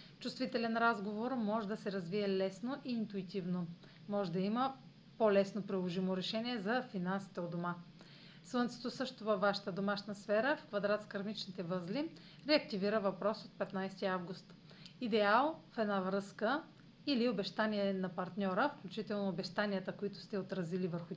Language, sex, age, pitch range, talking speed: Bulgarian, female, 40-59, 185-240 Hz, 140 wpm